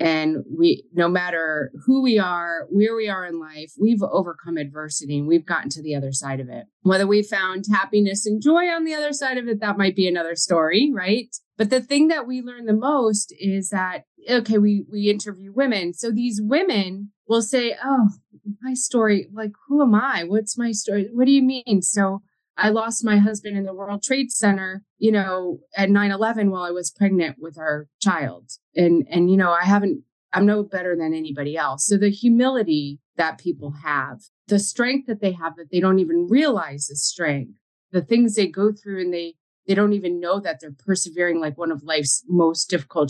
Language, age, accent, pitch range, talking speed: English, 30-49, American, 160-220 Hz, 205 wpm